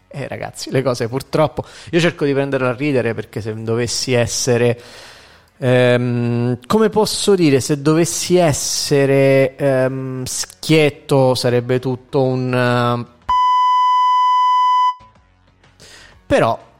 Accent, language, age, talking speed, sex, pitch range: native, Italian, 30-49, 100 wpm, male, 125-155 Hz